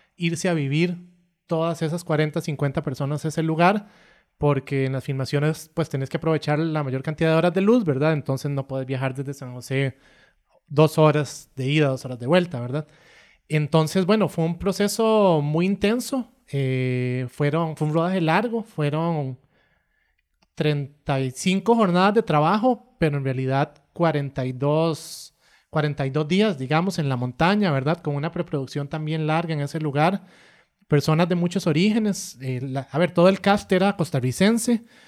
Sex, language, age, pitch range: male, Spanish, 30-49, 140-175 Hz